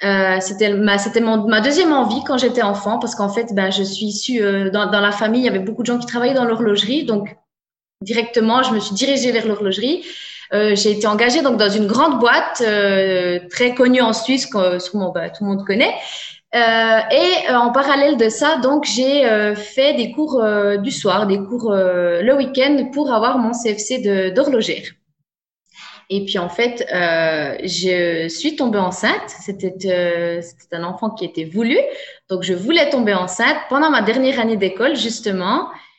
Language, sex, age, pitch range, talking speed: French, female, 20-39, 200-265 Hz, 195 wpm